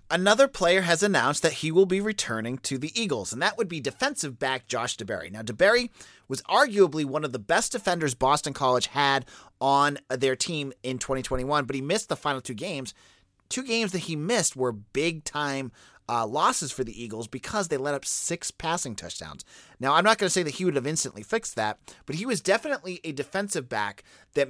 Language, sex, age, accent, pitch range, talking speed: English, male, 30-49, American, 130-175 Hz, 205 wpm